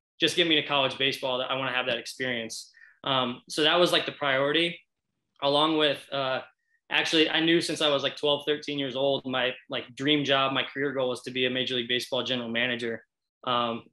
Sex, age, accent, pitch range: male, 20-39, American, 130-150 Hz